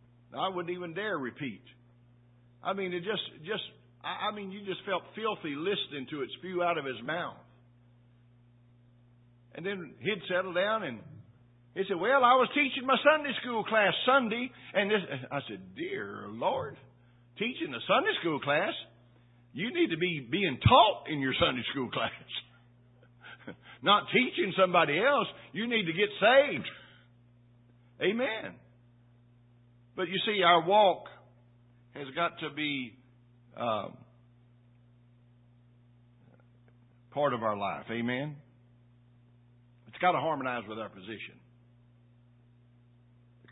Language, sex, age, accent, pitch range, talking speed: English, male, 60-79, American, 120-155 Hz, 130 wpm